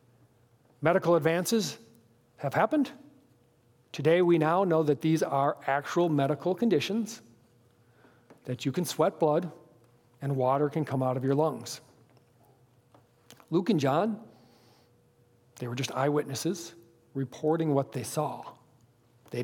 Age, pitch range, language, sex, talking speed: 40-59, 120-180 Hz, English, male, 120 wpm